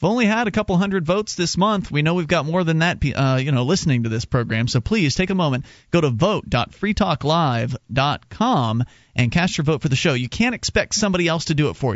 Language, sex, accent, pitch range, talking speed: English, male, American, 125-175 Hz, 235 wpm